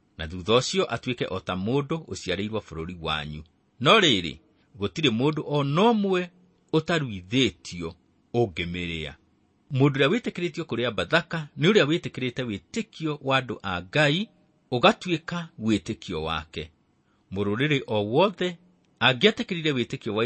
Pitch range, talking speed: 95-155 Hz, 105 wpm